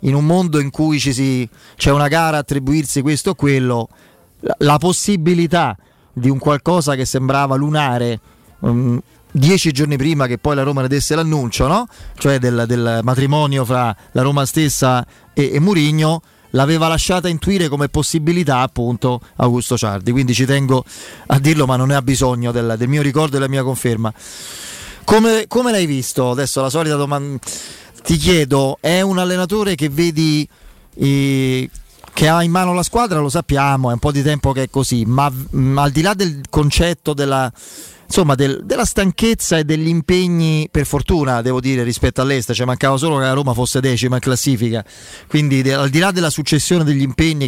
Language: Italian